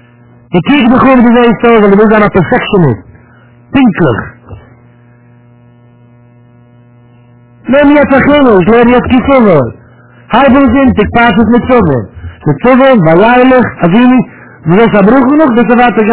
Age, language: 60-79, English